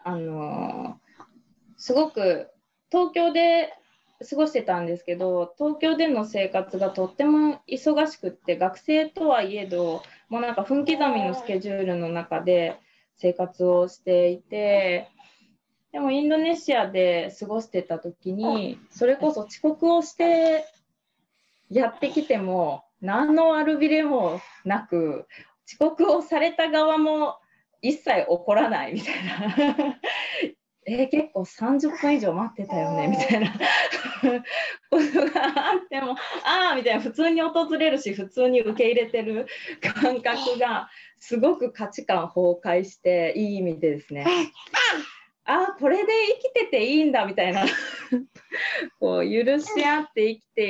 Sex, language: female, Japanese